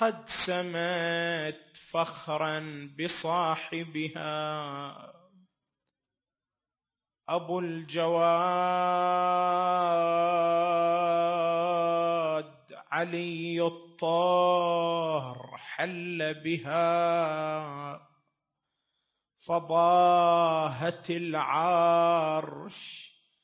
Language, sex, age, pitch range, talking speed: Arabic, male, 30-49, 155-170 Hz, 30 wpm